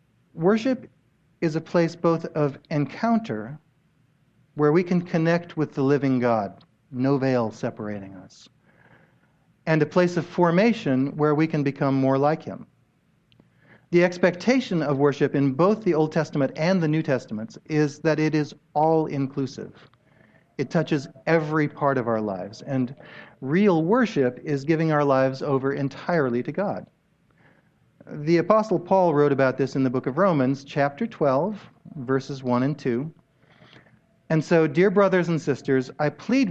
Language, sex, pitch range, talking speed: English, male, 135-170 Hz, 150 wpm